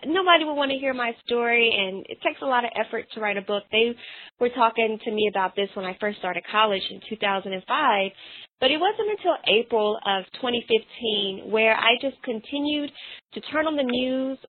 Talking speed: 200 wpm